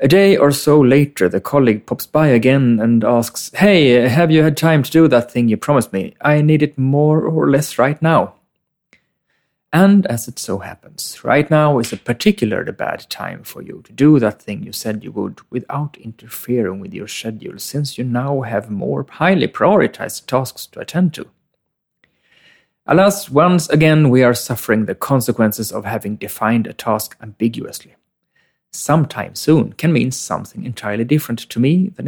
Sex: male